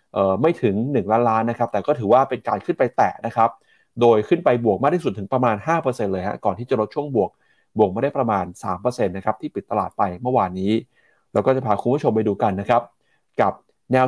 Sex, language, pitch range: male, Thai, 100-130 Hz